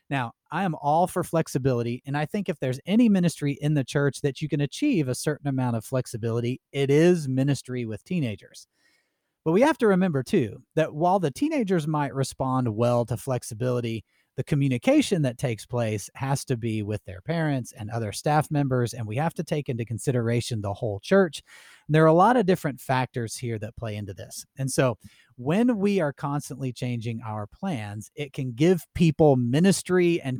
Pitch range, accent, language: 125-170 Hz, American, English